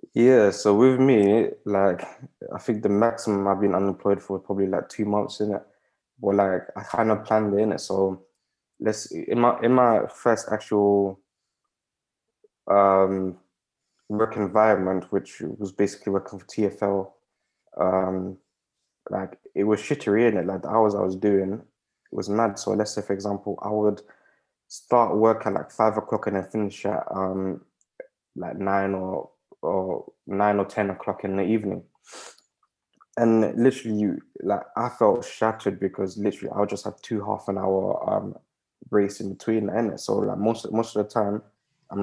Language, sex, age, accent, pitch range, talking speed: English, male, 20-39, British, 100-110 Hz, 175 wpm